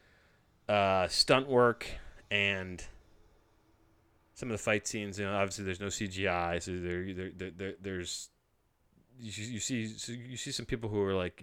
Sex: male